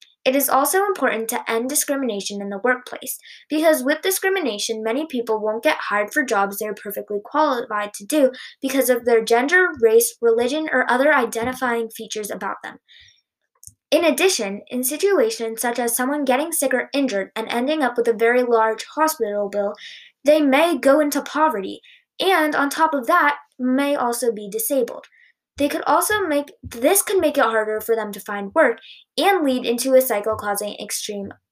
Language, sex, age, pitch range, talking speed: English, female, 20-39, 225-300 Hz, 175 wpm